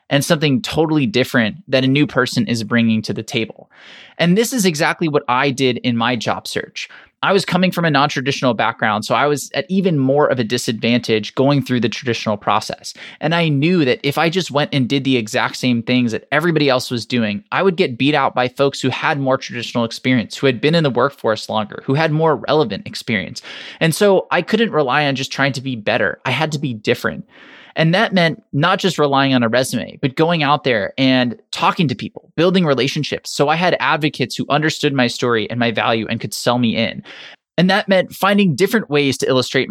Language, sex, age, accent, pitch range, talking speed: English, male, 20-39, American, 125-160 Hz, 220 wpm